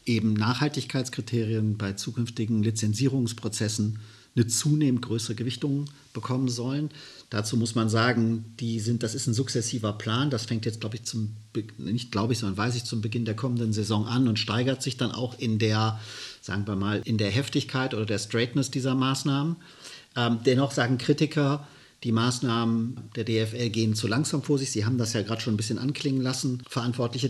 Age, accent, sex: 50-69, German, male